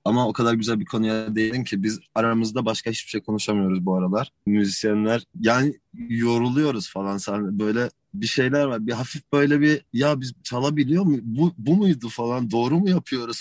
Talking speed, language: 180 wpm, Turkish